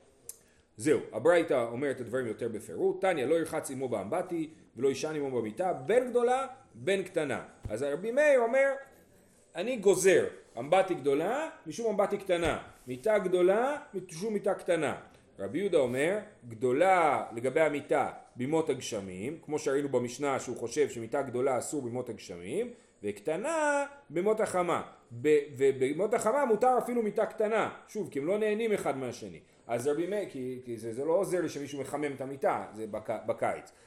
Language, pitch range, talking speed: Hebrew, 140-215 Hz, 150 wpm